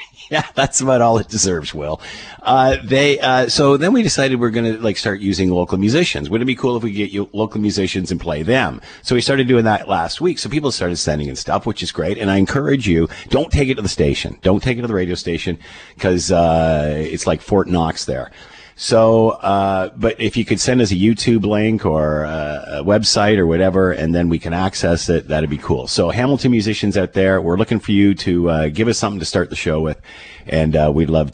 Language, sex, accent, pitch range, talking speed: English, male, American, 85-115 Hz, 235 wpm